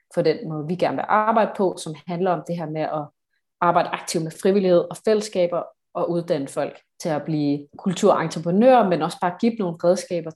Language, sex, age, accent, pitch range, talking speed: Danish, female, 30-49, native, 165-200 Hz, 195 wpm